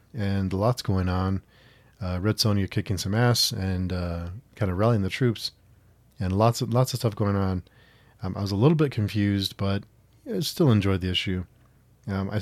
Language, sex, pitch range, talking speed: English, male, 95-120 Hz, 195 wpm